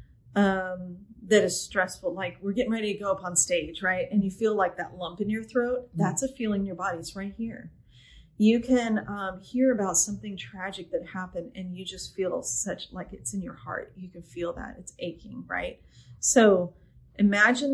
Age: 30-49